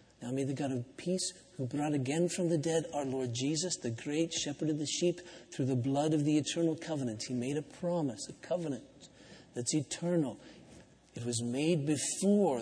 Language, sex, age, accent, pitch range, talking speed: English, male, 50-69, American, 135-175 Hz, 190 wpm